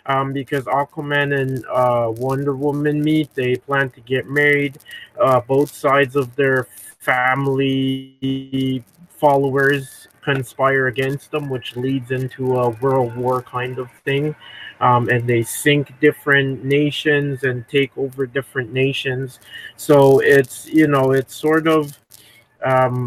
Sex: male